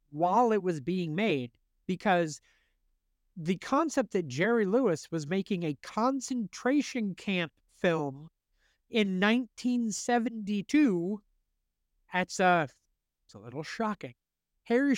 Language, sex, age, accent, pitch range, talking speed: English, male, 50-69, American, 135-190 Hz, 100 wpm